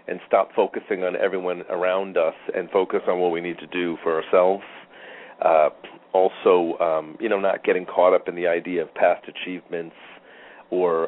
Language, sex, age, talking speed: English, male, 40-59, 180 wpm